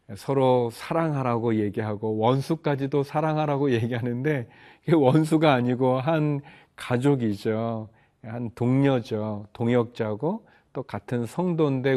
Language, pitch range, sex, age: Korean, 110-125 Hz, male, 40-59